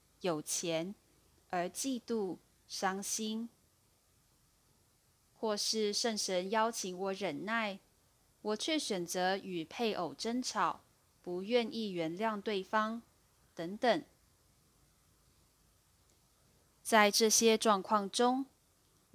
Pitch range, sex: 185-235 Hz, female